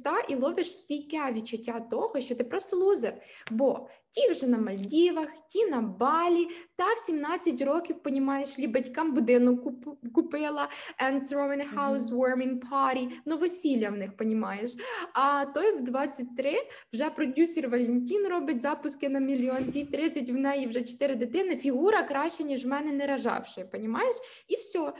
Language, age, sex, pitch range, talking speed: Ukrainian, 20-39, female, 245-315 Hz, 155 wpm